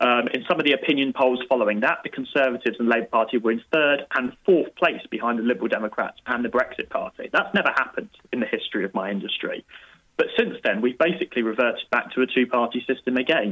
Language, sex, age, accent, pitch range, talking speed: English, male, 20-39, British, 110-135 Hz, 215 wpm